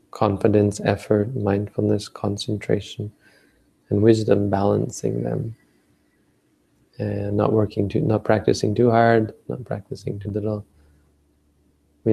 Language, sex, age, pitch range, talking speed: English, male, 30-49, 100-115 Hz, 105 wpm